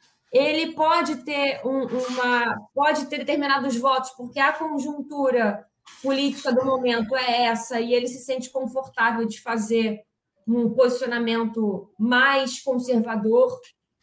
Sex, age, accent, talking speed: female, 20-39, Brazilian, 120 wpm